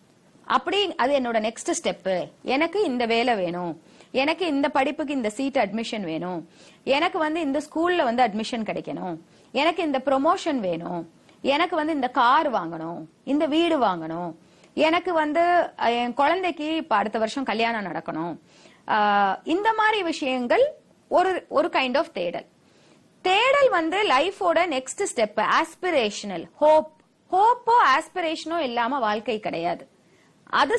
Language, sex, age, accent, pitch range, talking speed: English, female, 30-49, Indian, 230-345 Hz, 100 wpm